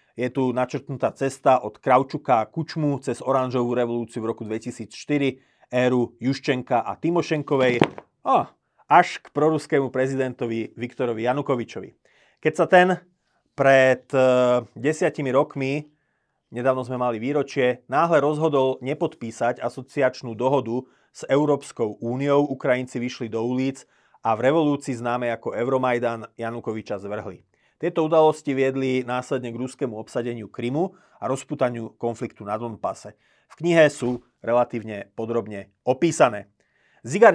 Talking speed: 120 wpm